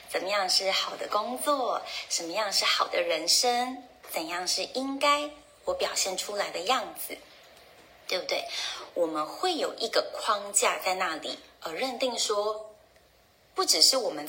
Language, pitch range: Chinese, 180-290 Hz